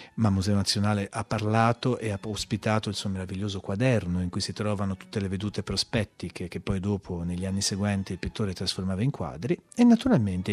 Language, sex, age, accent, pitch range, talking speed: Italian, male, 30-49, native, 95-130 Hz, 190 wpm